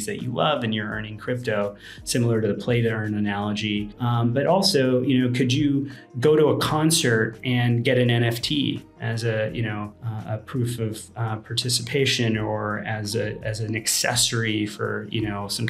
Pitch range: 105-125 Hz